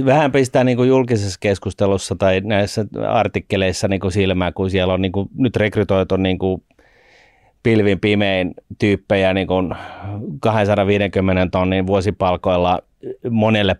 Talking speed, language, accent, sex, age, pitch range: 115 wpm, Finnish, native, male, 30-49, 95-110 Hz